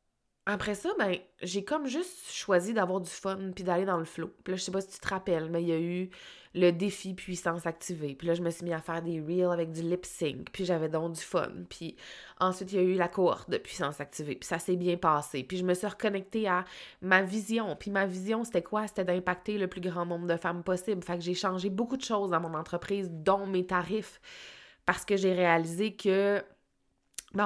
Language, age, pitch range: French, 20-39, 165-190 Hz